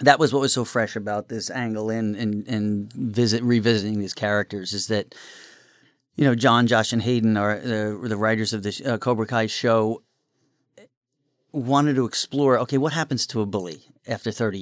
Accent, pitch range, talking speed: American, 110-135 Hz, 185 wpm